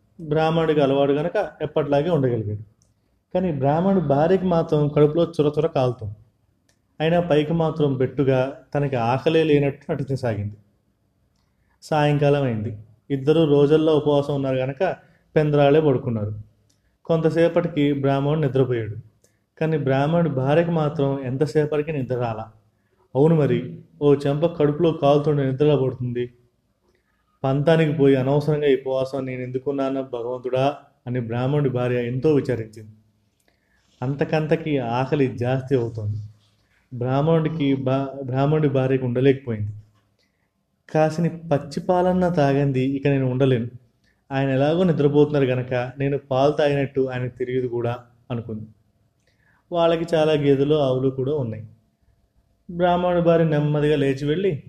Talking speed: 110 wpm